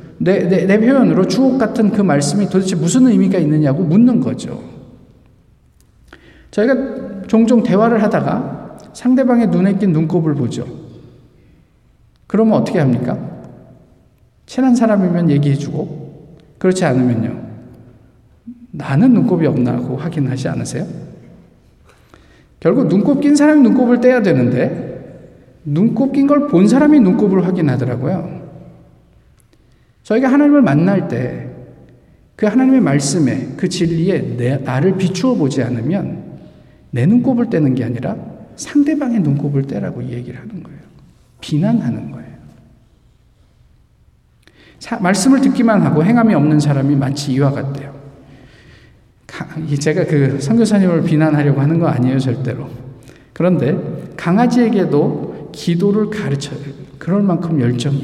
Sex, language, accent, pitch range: male, Korean, native, 140-220 Hz